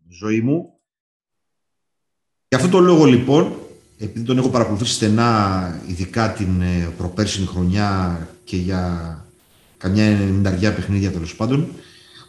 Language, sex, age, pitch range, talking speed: Greek, male, 30-49, 100-135 Hz, 110 wpm